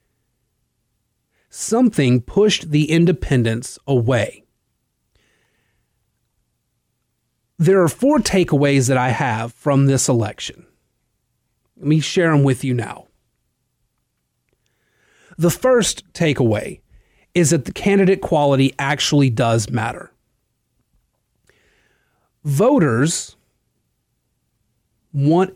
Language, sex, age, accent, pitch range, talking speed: English, male, 40-59, American, 125-165 Hz, 80 wpm